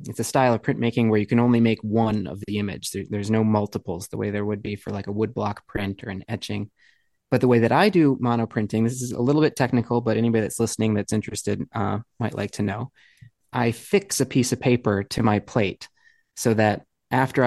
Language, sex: English, male